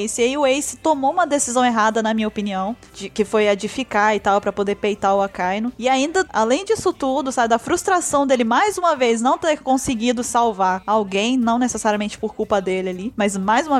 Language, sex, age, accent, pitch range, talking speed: Portuguese, female, 20-39, Brazilian, 210-270 Hz, 210 wpm